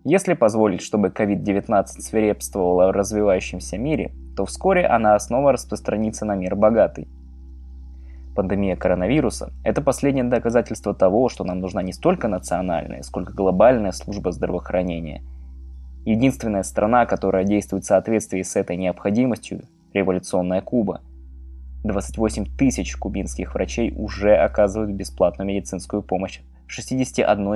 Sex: male